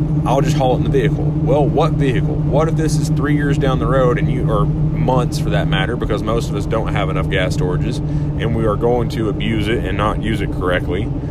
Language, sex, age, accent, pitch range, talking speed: English, male, 30-49, American, 130-145 Hz, 250 wpm